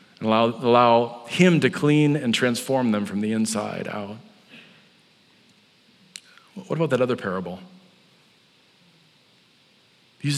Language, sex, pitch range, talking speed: English, male, 120-170 Hz, 110 wpm